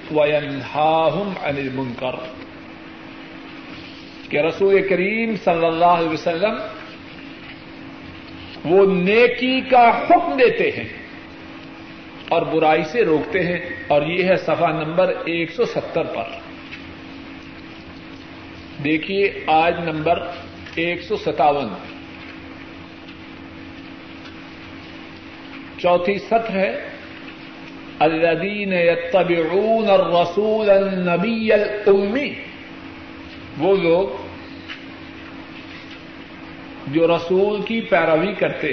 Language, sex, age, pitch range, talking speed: Urdu, male, 50-69, 170-255 Hz, 75 wpm